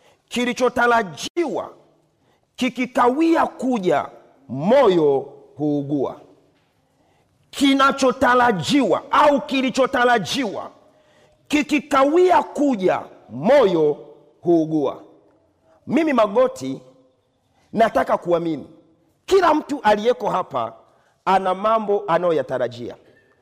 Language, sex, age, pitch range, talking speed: Swahili, male, 40-59, 225-295 Hz, 60 wpm